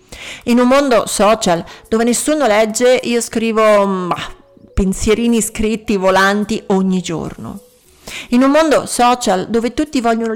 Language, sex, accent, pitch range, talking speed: Italian, female, native, 195-240 Hz, 120 wpm